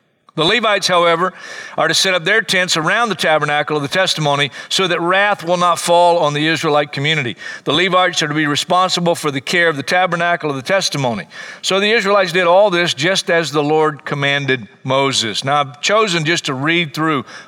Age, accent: 50-69, American